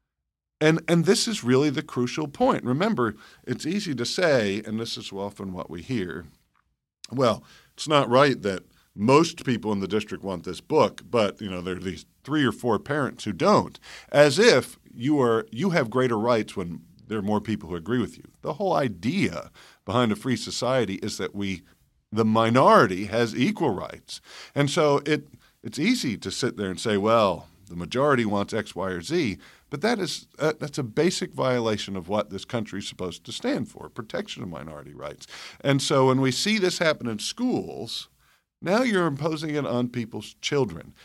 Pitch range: 100-145 Hz